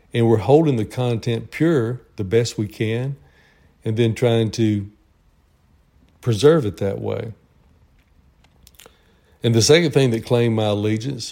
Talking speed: 140 wpm